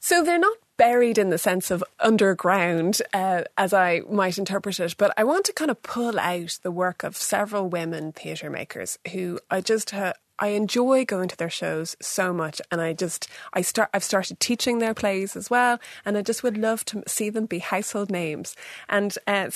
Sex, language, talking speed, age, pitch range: female, English, 205 wpm, 20-39, 180-215 Hz